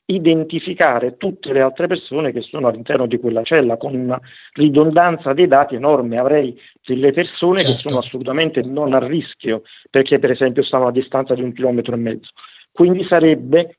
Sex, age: male, 50-69